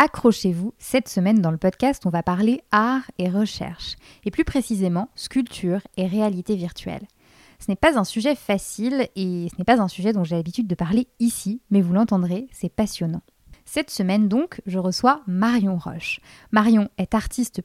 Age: 20-39